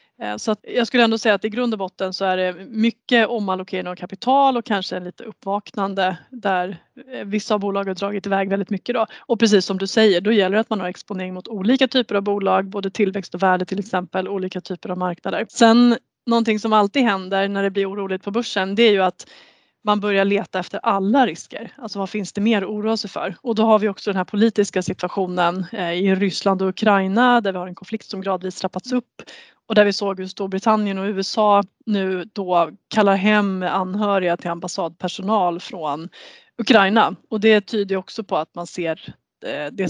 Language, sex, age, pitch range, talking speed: Swedish, female, 30-49, 185-220 Hz, 210 wpm